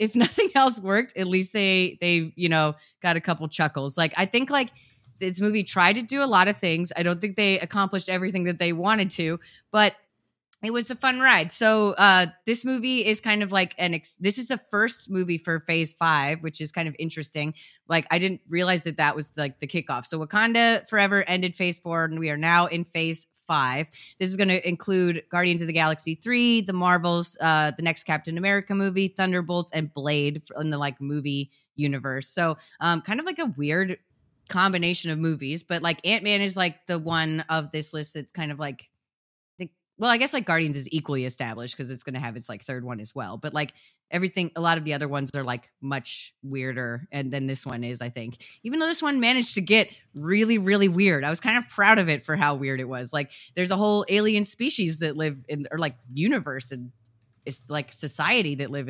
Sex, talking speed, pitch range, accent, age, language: female, 220 wpm, 145-195 Hz, American, 20-39, English